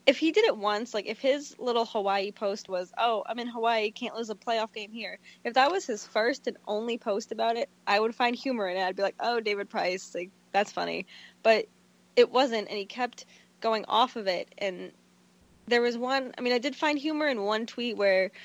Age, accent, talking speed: 20-39, American, 230 wpm